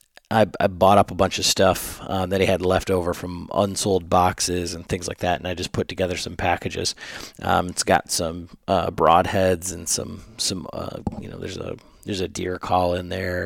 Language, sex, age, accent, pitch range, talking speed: English, male, 30-49, American, 90-100 Hz, 210 wpm